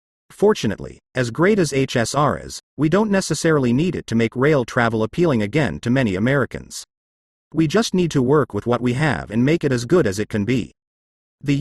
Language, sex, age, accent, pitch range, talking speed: English, male, 40-59, American, 110-160 Hz, 200 wpm